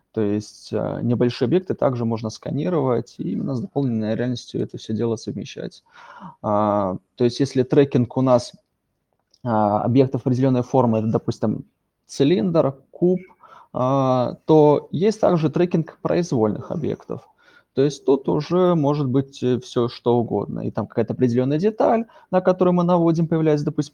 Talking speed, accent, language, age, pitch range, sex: 140 wpm, native, Russian, 20-39, 115-145 Hz, male